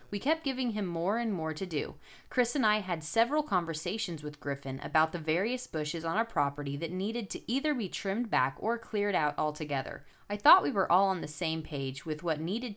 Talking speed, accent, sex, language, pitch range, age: 220 wpm, American, female, English, 160-235 Hz, 20-39